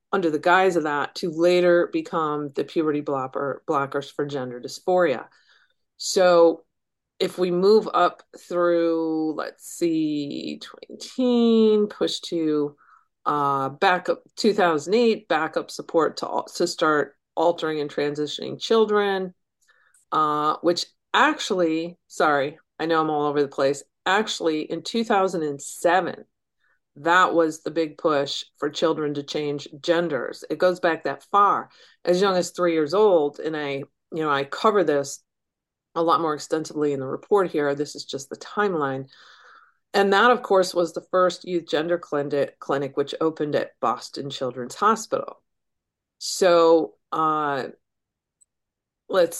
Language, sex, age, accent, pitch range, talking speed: English, female, 40-59, American, 150-195 Hz, 140 wpm